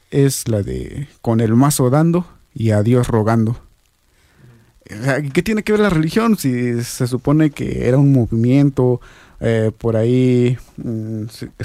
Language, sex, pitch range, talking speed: Spanish, male, 110-140 Hz, 145 wpm